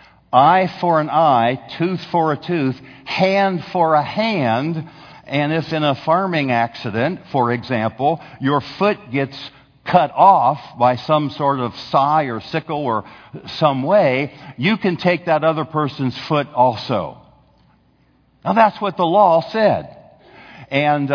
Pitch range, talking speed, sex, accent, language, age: 135-175 Hz, 140 wpm, male, American, English, 60-79